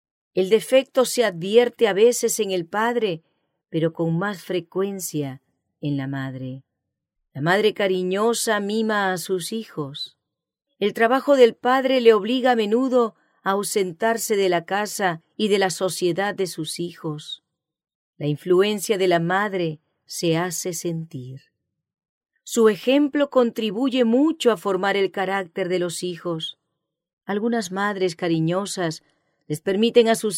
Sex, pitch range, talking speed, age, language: female, 170-220 Hz, 135 wpm, 40-59, English